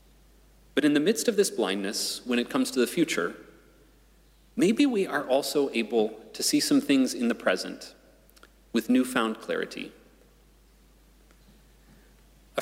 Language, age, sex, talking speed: English, 30-49, male, 140 wpm